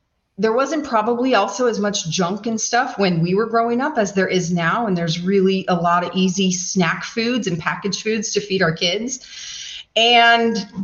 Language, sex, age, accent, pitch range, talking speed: English, female, 30-49, American, 185-245 Hz, 195 wpm